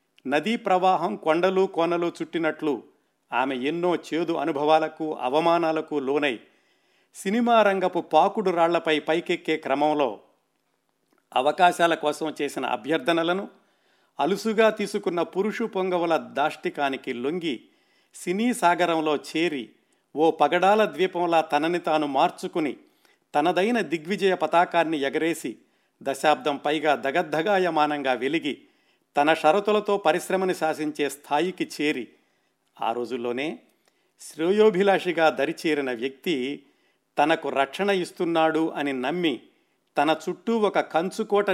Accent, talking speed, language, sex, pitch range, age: native, 90 wpm, Telugu, male, 150-190 Hz, 50-69